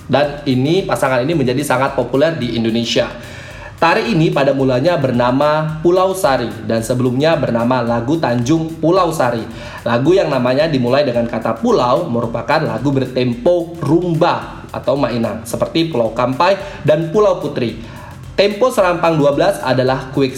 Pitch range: 125-160 Hz